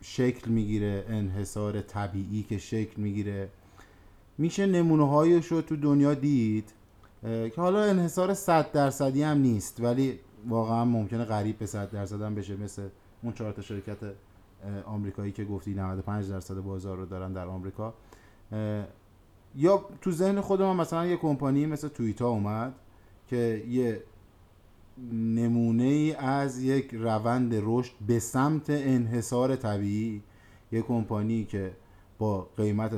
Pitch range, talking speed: 100-130 Hz, 130 wpm